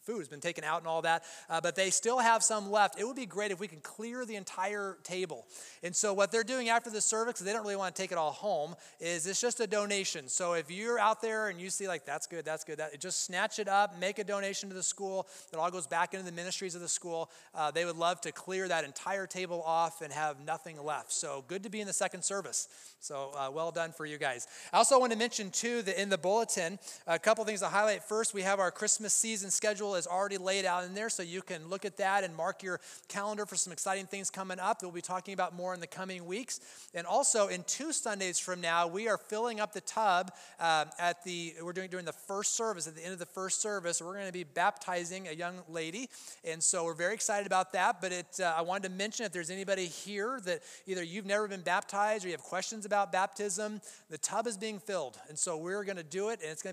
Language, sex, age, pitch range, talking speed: English, male, 30-49, 175-205 Hz, 260 wpm